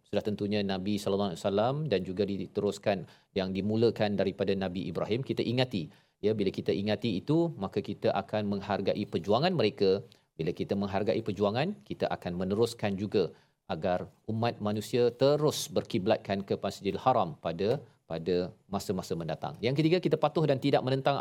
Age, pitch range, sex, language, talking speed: 40-59, 105-135 Hz, male, Malayalam, 155 wpm